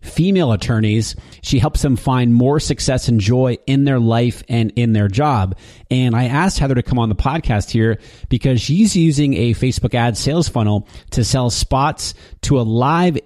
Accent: American